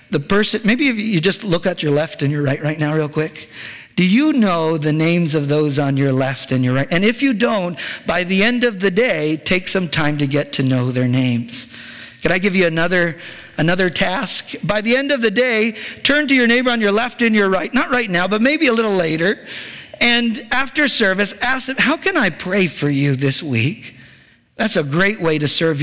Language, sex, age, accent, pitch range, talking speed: English, male, 50-69, American, 135-200 Hz, 230 wpm